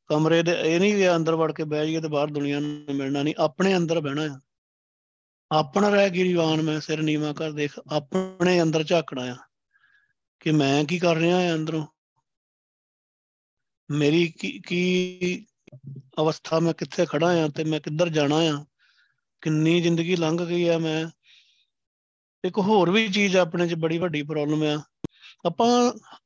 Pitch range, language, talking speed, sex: 155-185 Hz, Punjabi, 125 wpm, male